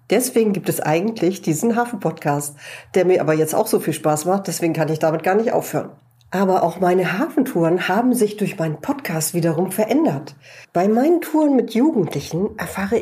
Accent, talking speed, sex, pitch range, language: German, 180 wpm, female, 165-220 Hz, German